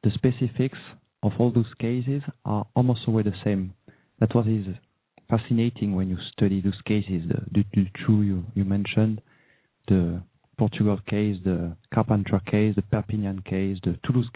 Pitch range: 105-125 Hz